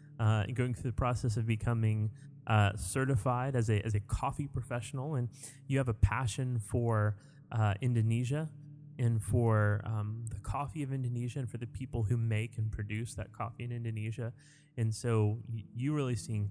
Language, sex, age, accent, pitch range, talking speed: English, male, 30-49, American, 110-135 Hz, 170 wpm